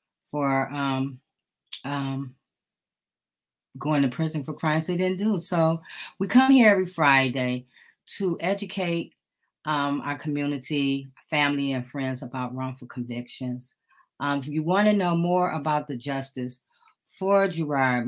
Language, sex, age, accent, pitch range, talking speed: English, female, 30-49, American, 130-165 Hz, 130 wpm